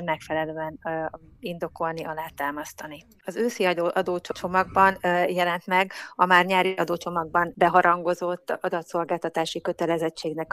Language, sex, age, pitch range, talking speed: Hungarian, female, 30-49, 165-175 Hz, 90 wpm